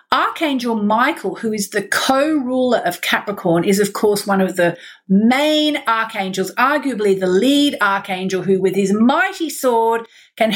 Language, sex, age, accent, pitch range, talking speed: English, female, 40-59, Australian, 200-275 Hz, 150 wpm